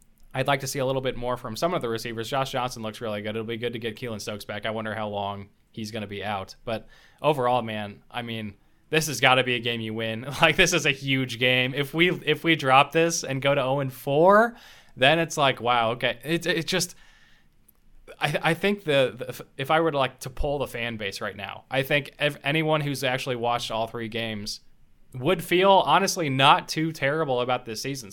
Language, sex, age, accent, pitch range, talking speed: English, male, 20-39, American, 110-145 Hz, 235 wpm